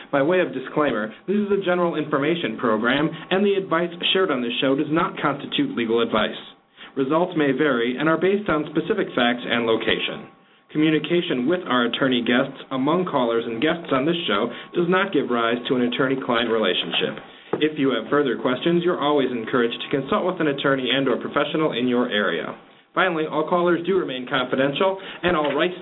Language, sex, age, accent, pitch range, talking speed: English, male, 30-49, American, 125-170 Hz, 190 wpm